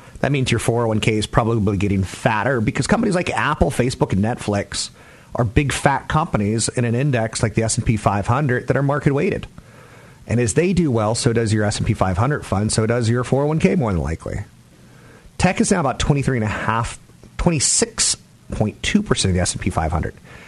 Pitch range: 95-135 Hz